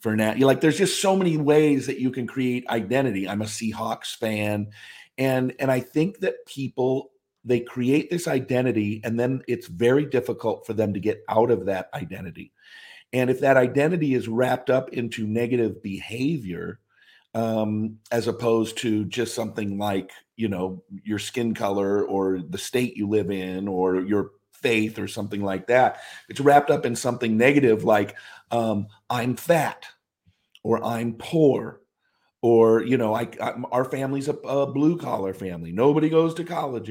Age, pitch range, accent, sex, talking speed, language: 50-69, 110-135 Hz, American, male, 165 wpm, English